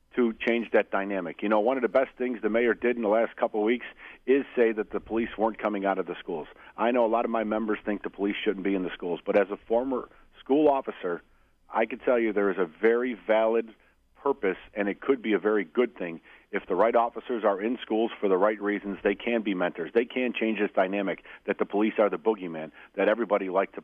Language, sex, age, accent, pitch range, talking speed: English, male, 40-59, American, 105-130 Hz, 250 wpm